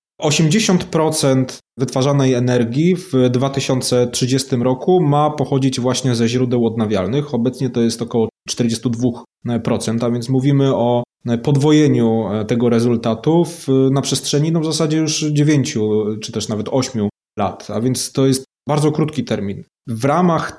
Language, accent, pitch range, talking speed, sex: Polish, native, 115-145 Hz, 125 wpm, male